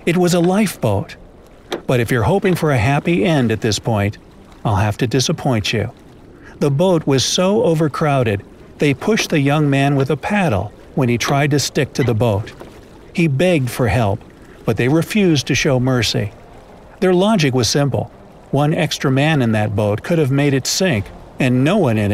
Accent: American